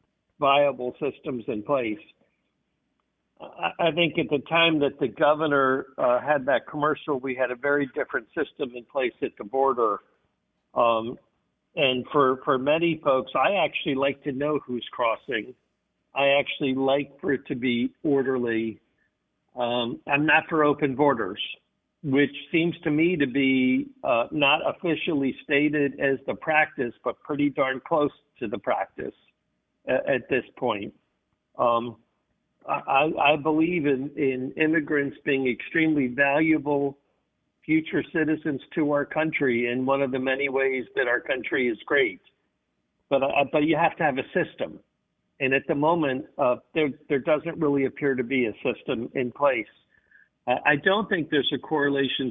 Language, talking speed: English, 155 wpm